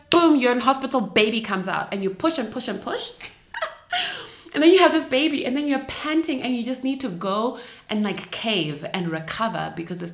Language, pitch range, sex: English, 190-250 Hz, female